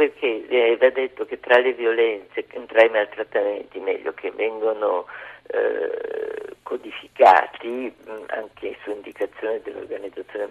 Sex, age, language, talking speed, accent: male, 50-69, Italian, 120 wpm, native